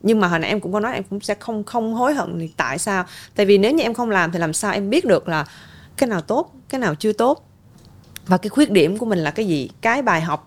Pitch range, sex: 170-235 Hz, female